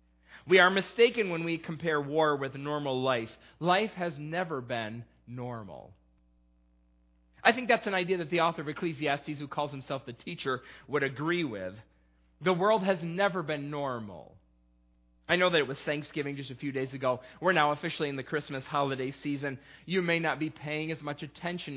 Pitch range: 130-175 Hz